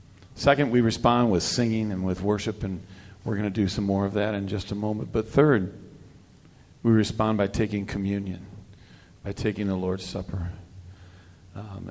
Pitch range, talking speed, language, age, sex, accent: 95-110 Hz, 170 wpm, English, 50-69, male, American